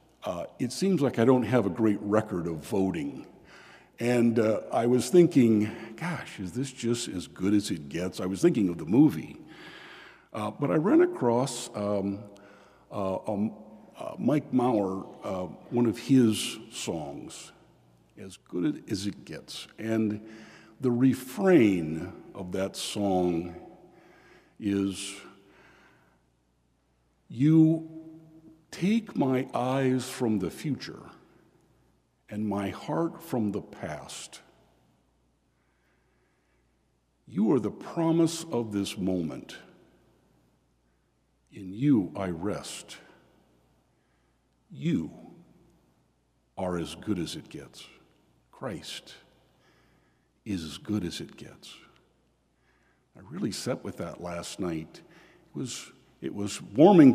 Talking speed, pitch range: 115 wpm, 85-125 Hz